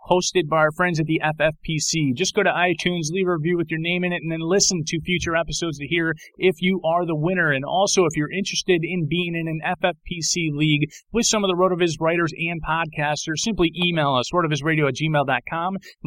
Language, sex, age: English, male, 30-49